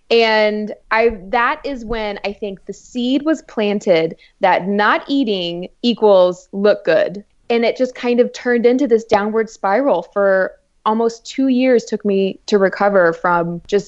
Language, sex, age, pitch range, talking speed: English, female, 20-39, 200-245 Hz, 160 wpm